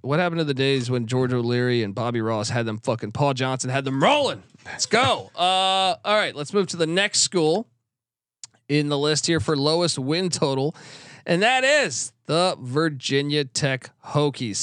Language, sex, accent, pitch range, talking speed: English, male, American, 125-185 Hz, 185 wpm